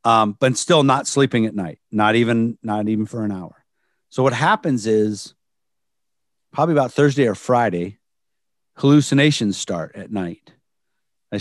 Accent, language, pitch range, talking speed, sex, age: American, English, 105-130 Hz, 145 wpm, male, 50-69